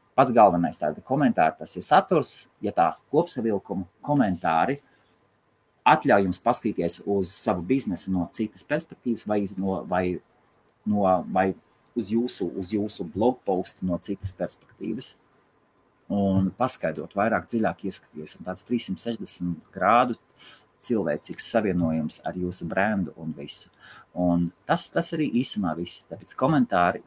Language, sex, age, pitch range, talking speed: English, male, 30-49, 90-120 Hz, 130 wpm